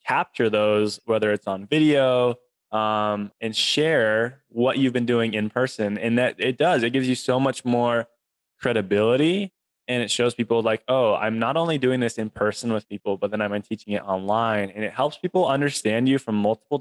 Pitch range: 105-125 Hz